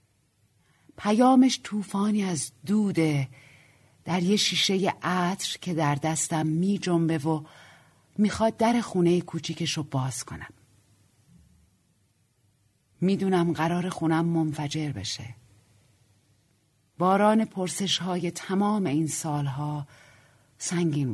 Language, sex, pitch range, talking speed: Persian, female, 115-180 Hz, 90 wpm